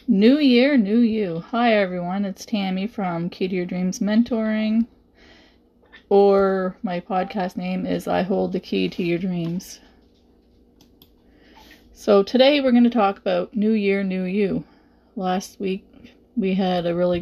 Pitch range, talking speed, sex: 180-220 Hz, 150 wpm, female